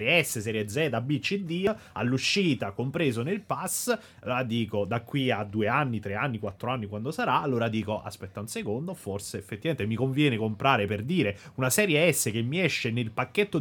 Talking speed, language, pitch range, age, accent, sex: 185 wpm, Italian, 105-135 Hz, 30-49, native, male